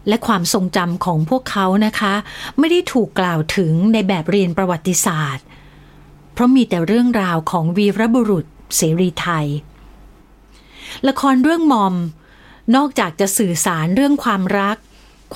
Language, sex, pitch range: Thai, female, 180-245 Hz